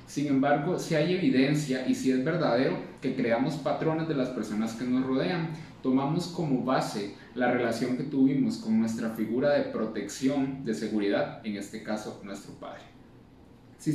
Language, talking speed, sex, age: Spanish, 165 wpm, male, 30-49